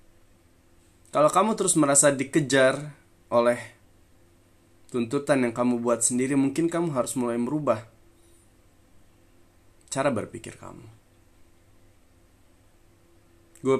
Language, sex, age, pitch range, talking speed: Indonesian, male, 20-39, 85-130 Hz, 85 wpm